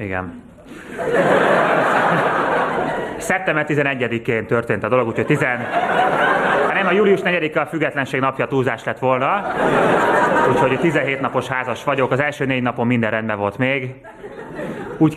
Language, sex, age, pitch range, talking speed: Hungarian, male, 20-39, 110-140 Hz, 125 wpm